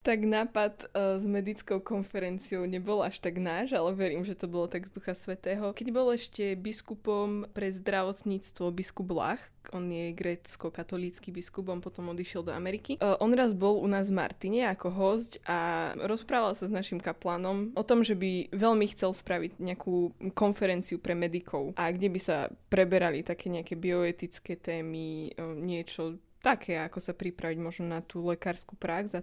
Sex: female